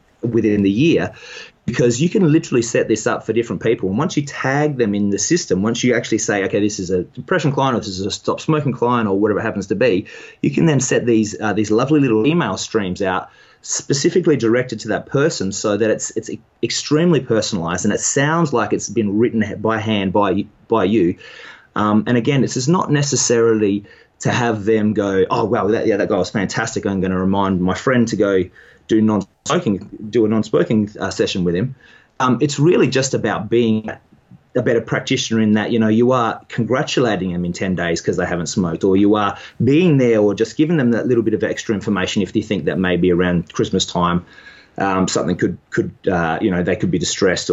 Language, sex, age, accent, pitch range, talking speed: English, male, 30-49, Australian, 100-130 Hz, 220 wpm